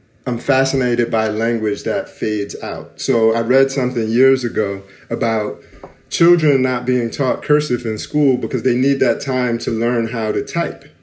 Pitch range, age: 110-135 Hz, 30-49